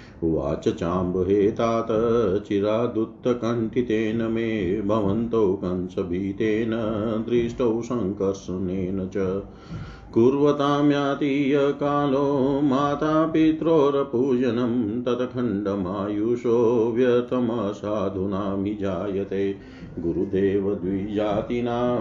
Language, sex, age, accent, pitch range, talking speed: Hindi, male, 50-69, native, 105-135 Hz, 40 wpm